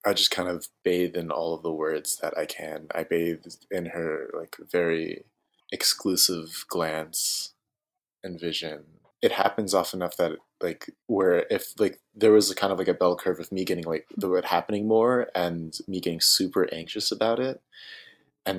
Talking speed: 185 wpm